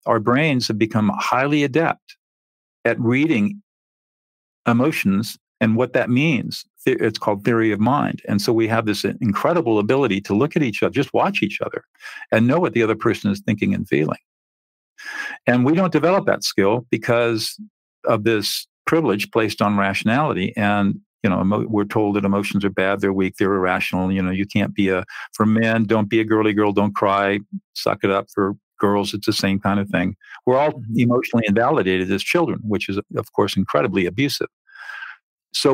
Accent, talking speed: American, 185 wpm